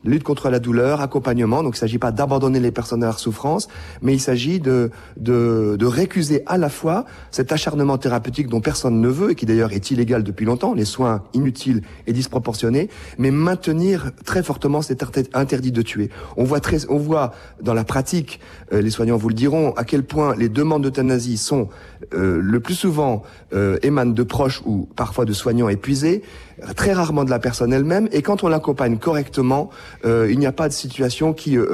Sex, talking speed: male, 200 wpm